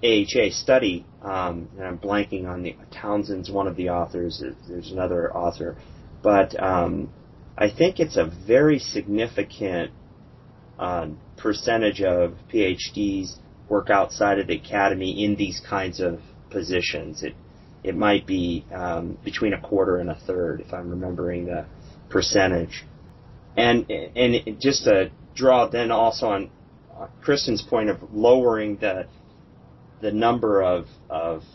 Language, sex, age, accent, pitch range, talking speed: English, male, 30-49, American, 95-115 Hz, 135 wpm